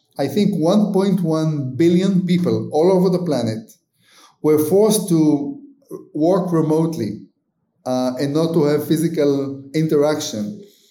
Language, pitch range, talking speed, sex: English, 130-170 Hz, 115 wpm, male